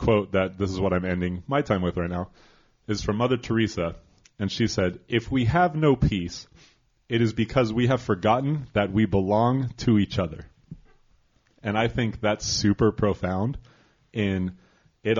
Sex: male